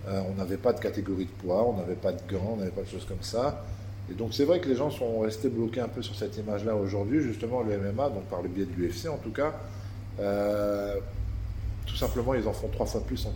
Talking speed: 260 wpm